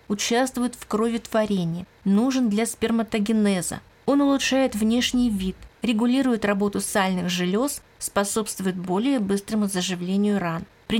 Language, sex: Russian, female